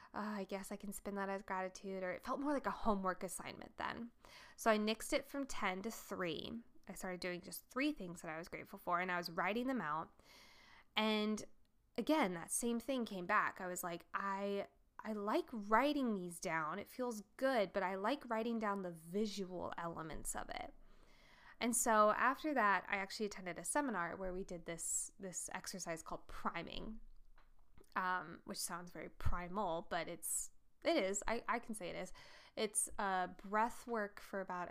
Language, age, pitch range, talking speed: English, 10-29, 180-225 Hz, 190 wpm